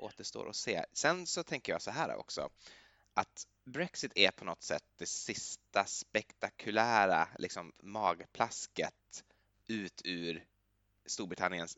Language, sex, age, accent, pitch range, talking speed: Swedish, male, 20-39, native, 95-120 Hz, 120 wpm